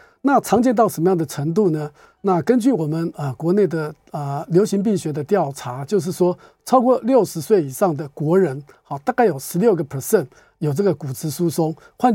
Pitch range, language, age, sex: 155-205 Hz, Chinese, 50-69, male